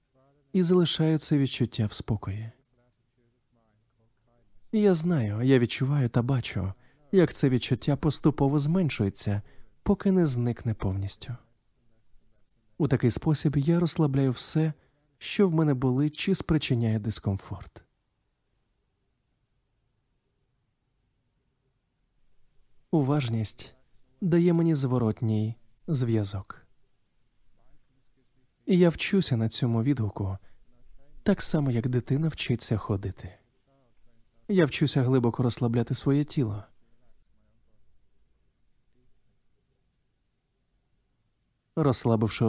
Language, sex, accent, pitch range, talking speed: Ukrainian, male, native, 115-145 Hz, 80 wpm